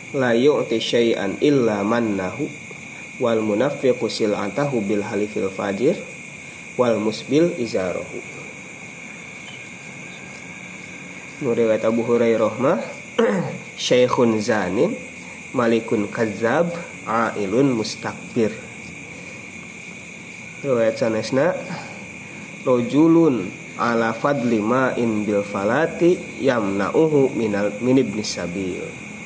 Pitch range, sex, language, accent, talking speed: 105-125 Hz, male, Indonesian, native, 70 wpm